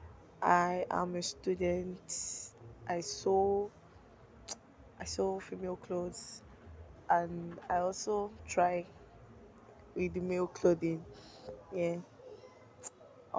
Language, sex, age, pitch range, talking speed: English, female, 10-29, 170-190 Hz, 80 wpm